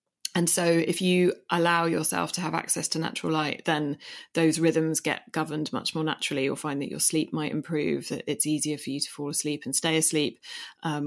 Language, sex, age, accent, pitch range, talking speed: English, female, 20-39, British, 140-155 Hz, 210 wpm